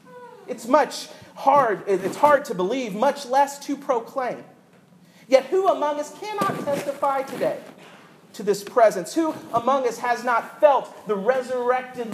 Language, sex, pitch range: English, male, 190-260 Hz